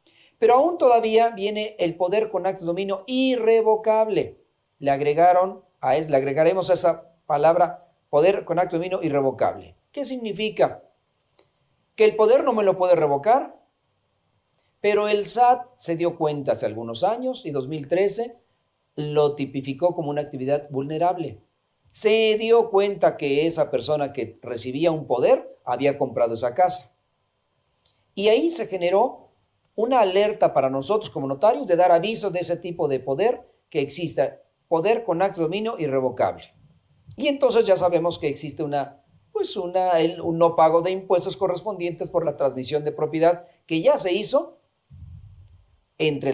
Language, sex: Spanish, male